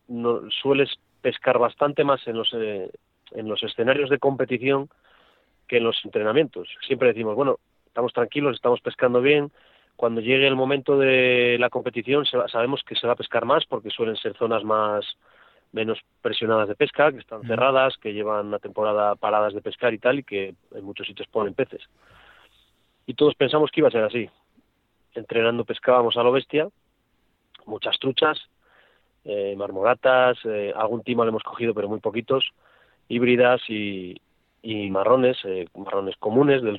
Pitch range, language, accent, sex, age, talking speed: 110-130 Hz, Spanish, Spanish, male, 30-49, 165 wpm